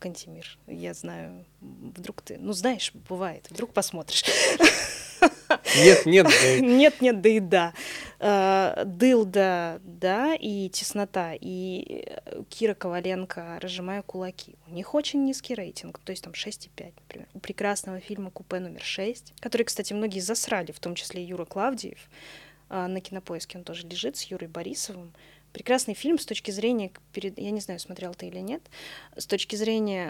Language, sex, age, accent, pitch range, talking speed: Russian, female, 20-39, native, 175-220 Hz, 145 wpm